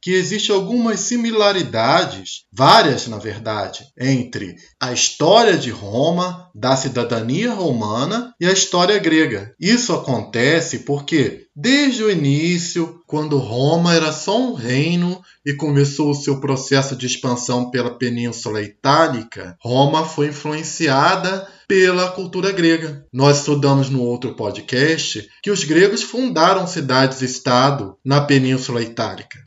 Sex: male